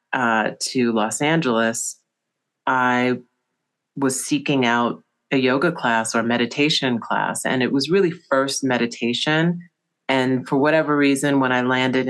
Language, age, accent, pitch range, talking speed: English, 30-49, American, 120-135 Hz, 140 wpm